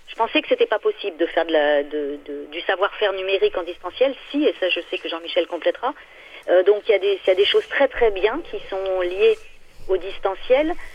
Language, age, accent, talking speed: French, 40-59, French, 225 wpm